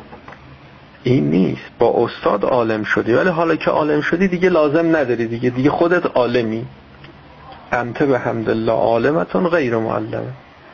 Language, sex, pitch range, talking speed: Persian, male, 115-170 Hz, 140 wpm